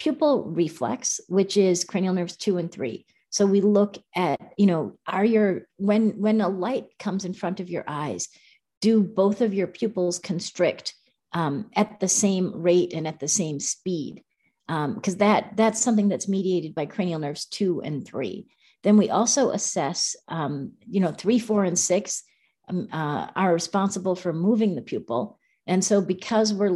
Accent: American